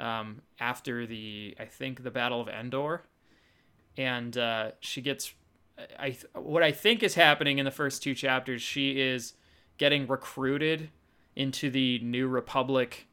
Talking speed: 150 wpm